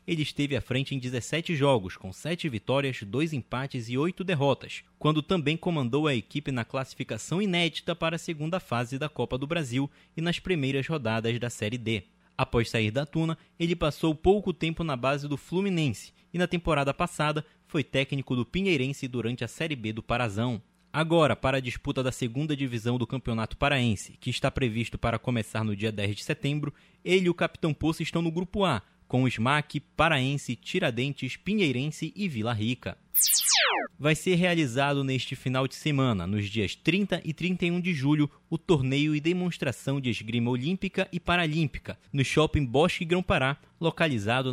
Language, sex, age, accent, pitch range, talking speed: Portuguese, male, 20-39, Brazilian, 125-165 Hz, 175 wpm